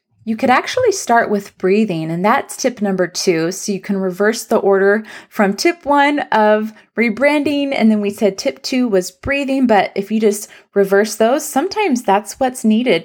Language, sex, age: English, female, 20-39